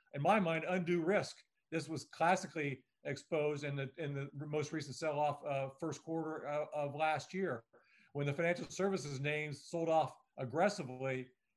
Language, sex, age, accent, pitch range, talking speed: English, male, 50-69, American, 140-165 Hz, 160 wpm